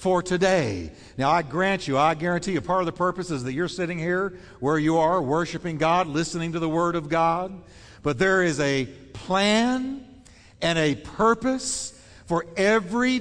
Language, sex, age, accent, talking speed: English, male, 60-79, American, 170 wpm